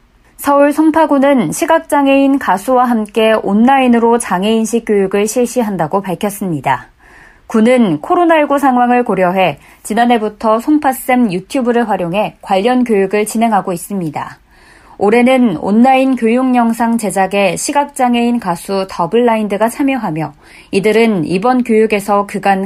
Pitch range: 190-245 Hz